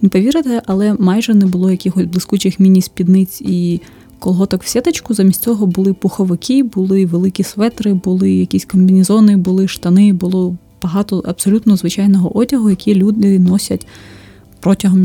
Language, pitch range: Ukrainian, 185-215 Hz